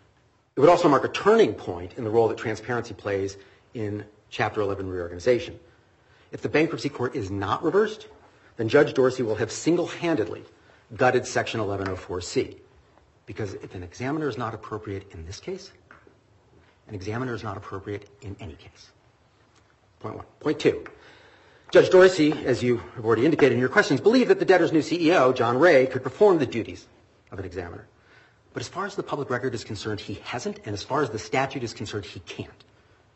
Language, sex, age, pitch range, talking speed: English, male, 40-59, 100-130 Hz, 185 wpm